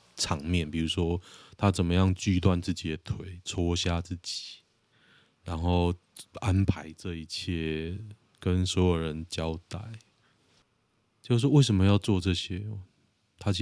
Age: 20-39